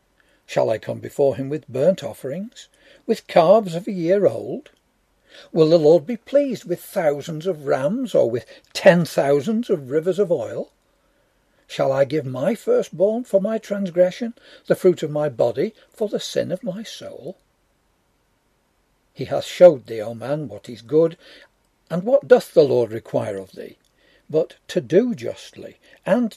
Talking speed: 165 wpm